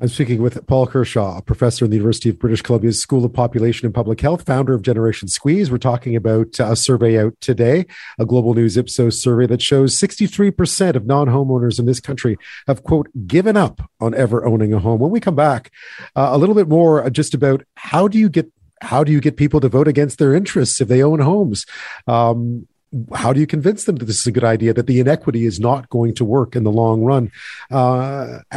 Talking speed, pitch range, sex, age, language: 225 wpm, 115-145 Hz, male, 40-59, English